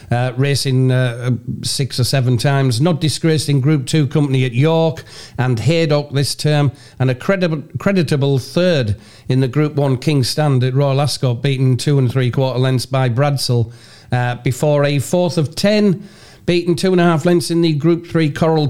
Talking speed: 185 wpm